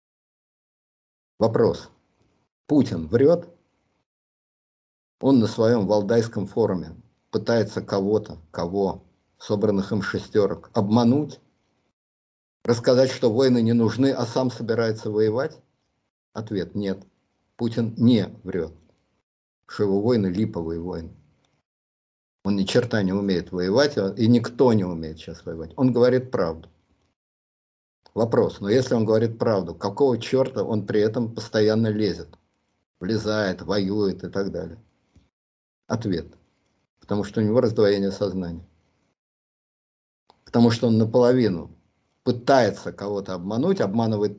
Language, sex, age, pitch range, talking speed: Russian, male, 50-69, 95-115 Hz, 110 wpm